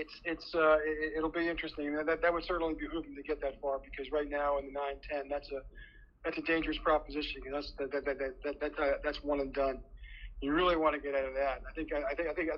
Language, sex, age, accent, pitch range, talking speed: English, male, 40-59, American, 135-155 Hz, 275 wpm